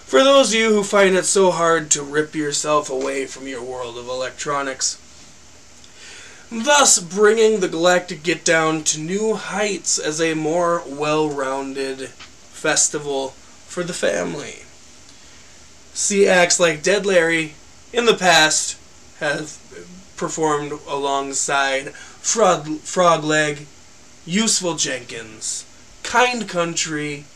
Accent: American